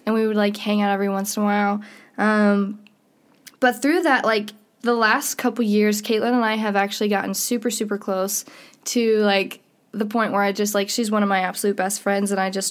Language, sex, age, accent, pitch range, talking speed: English, female, 10-29, American, 200-240 Hz, 220 wpm